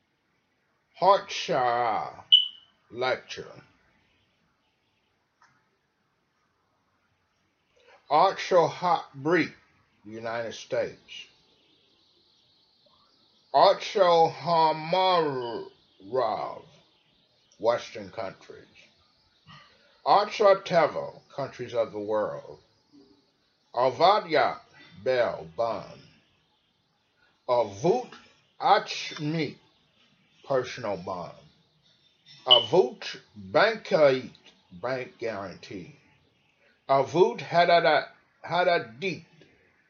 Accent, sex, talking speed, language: American, male, 45 wpm, English